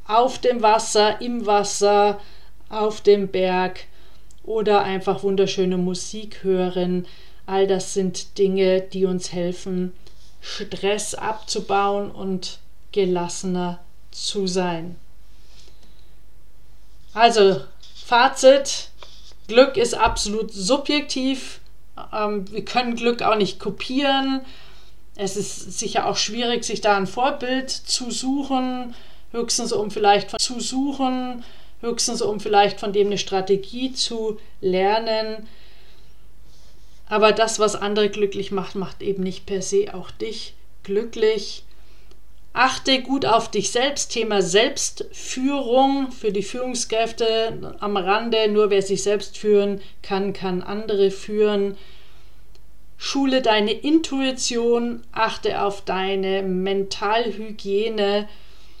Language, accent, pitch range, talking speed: German, German, 195-235 Hz, 110 wpm